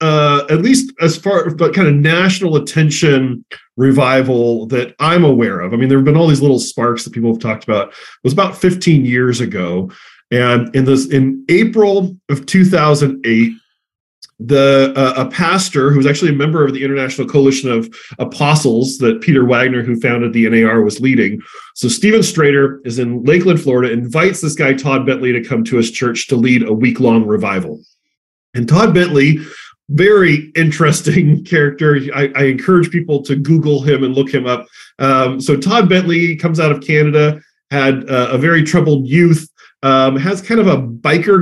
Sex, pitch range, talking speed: male, 130-165 Hz, 185 wpm